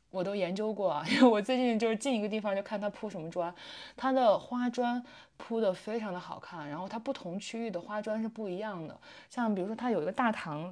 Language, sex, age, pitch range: Chinese, female, 20-39, 180-230 Hz